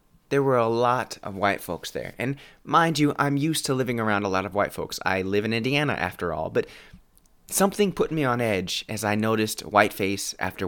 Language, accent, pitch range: English, American, 100-130 Hz